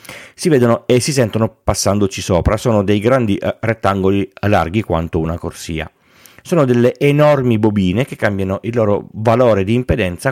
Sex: male